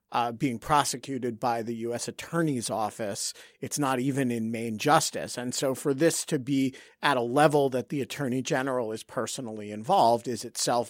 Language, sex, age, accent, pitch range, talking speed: English, male, 50-69, American, 115-140 Hz, 175 wpm